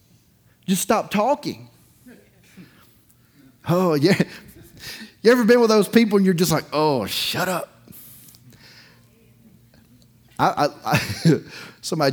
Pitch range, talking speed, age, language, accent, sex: 130-185 Hz, 95 wpm, 30-49, English, American, male